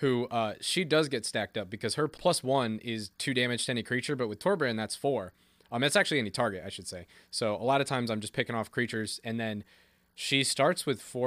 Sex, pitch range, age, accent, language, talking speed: male, 110-130 Hz, 20-39, American, English, 245 wpm